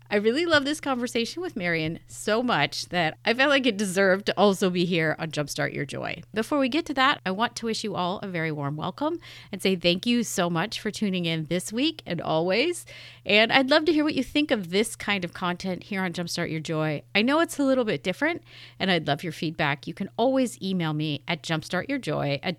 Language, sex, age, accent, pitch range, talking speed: English, female, 40-59, American, 160-220 Hz, 235 wpm